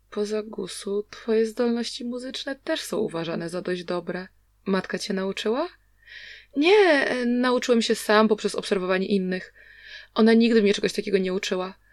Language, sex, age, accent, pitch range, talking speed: Polish, female, 20-39, native, 195-255 Hz, 155 wpm